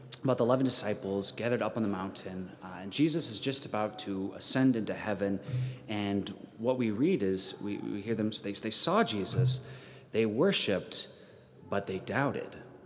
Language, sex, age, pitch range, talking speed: English, male, 30-49, 100-130 Hz, 175 wpm